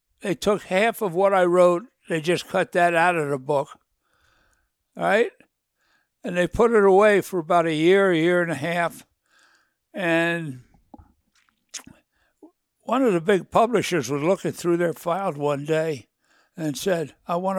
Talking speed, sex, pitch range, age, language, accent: 165 wpm, male, 150-195 Hz, 60-79, English, American